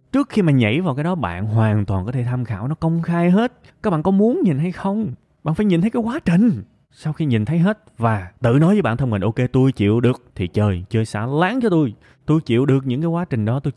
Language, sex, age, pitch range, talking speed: Vietnamese, male, 20-39, 110-170 Hz, 285 wpm